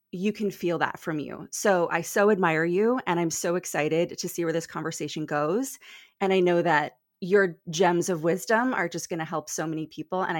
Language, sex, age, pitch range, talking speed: English, female, 20-39, 160-215 Hz, 220 wpm